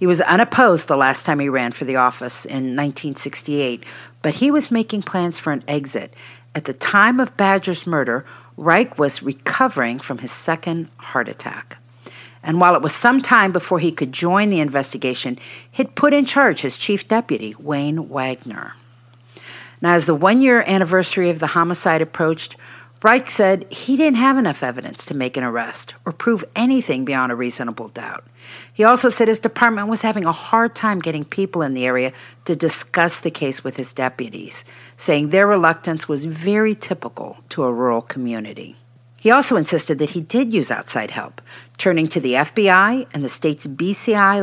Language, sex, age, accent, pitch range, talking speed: English, female, 50-69, American, 130-200 Hz, 180 wpm